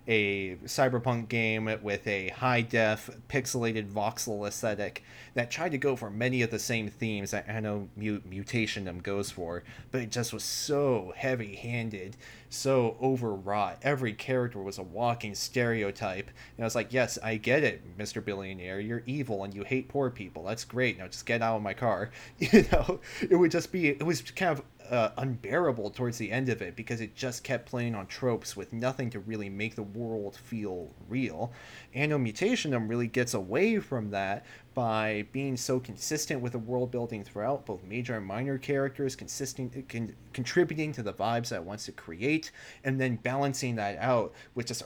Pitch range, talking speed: 105-130 Hz, 185 wpm